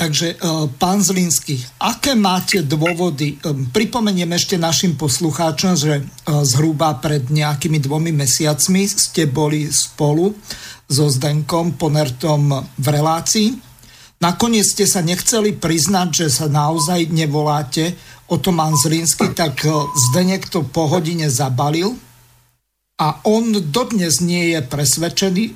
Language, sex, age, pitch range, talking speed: Slovak, male, 50-69, 150-185 Hz, 115 wpm